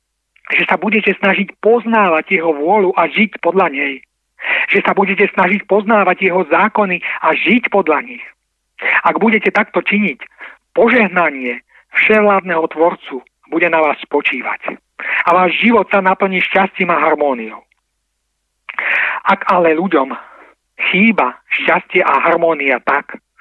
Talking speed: 125 wpm